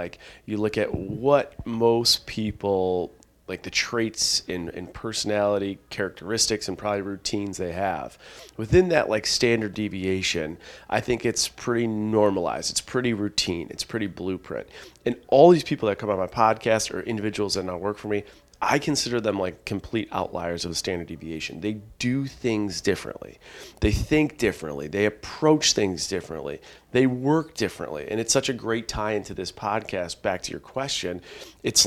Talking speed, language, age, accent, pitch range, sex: 170 wpm, English, 30-49, American, 105-150 Hz, male